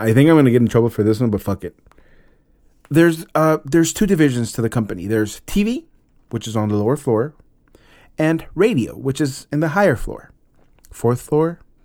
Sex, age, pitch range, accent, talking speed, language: male, 30-49, 110-160 Hz, American, 205 wpm, English